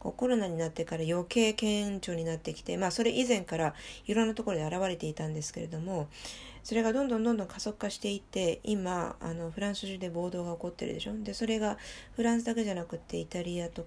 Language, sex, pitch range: Japanese, female, 165-215 Hz